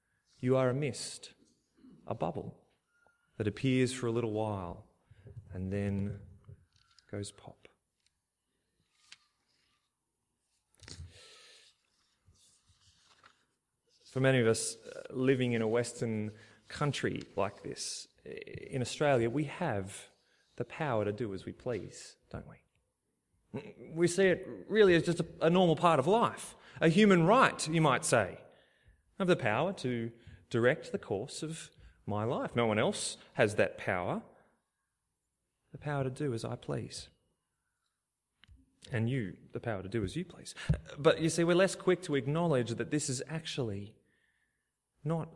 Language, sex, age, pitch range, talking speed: English, male, 30-49, 105-150 Hz, 135 wpm